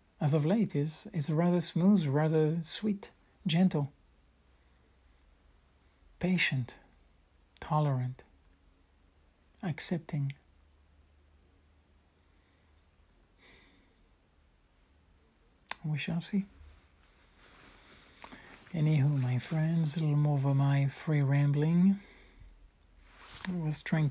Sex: male